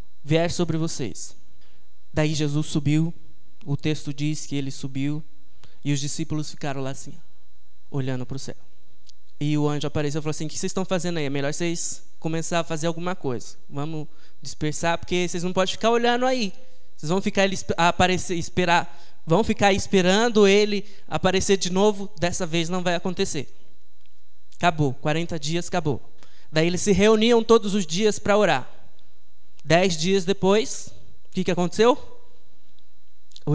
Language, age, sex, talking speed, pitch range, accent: Portuguese, 20-39, male, 160 wpm, 145-200 Hz, Brazilian